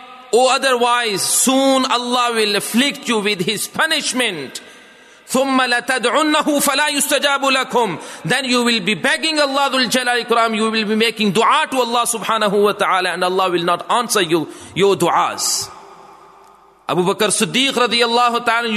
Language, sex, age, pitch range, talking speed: English, male, 30-49, 215-275 Hz, 130 wpm